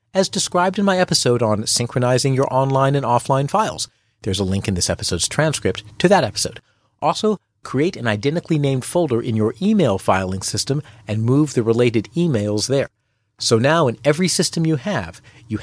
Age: 40-59